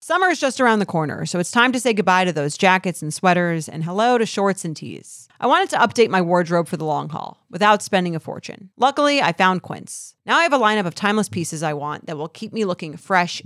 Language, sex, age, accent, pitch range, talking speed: English, female, 30-49, American, 165-210 Hz, 255 wpm